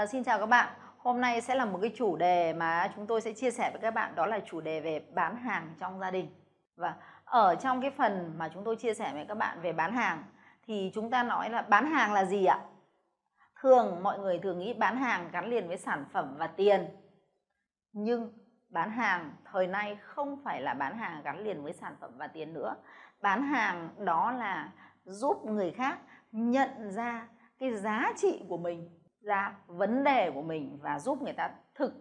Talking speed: 210 wpm